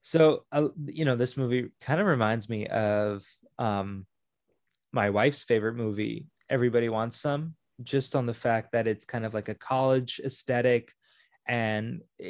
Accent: American